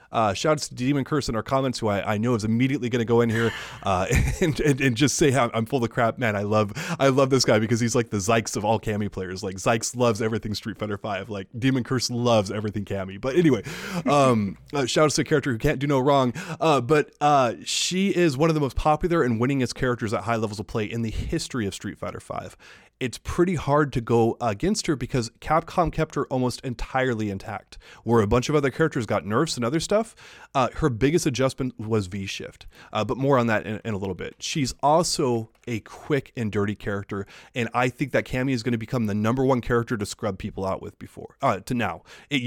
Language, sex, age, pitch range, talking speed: English, male, 20-39, 110-150 Hz, 240 wpm